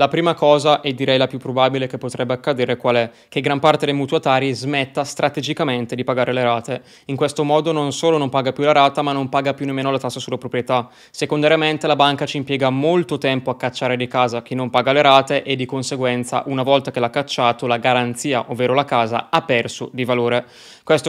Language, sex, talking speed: Italian, male, 220 wpm